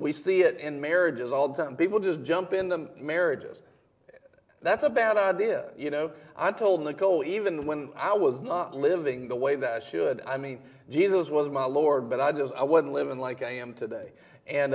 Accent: American